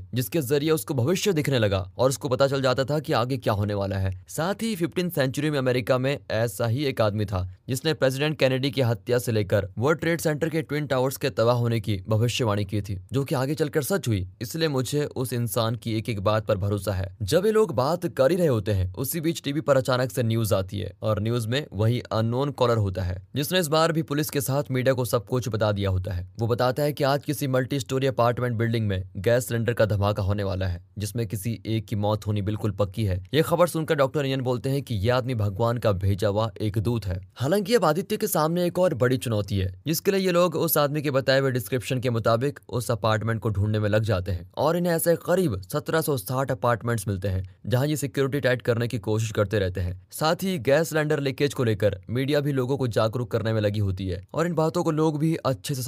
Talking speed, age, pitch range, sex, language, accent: 195 wpm, 20-39, 110-150 Hz, male, Hindi, native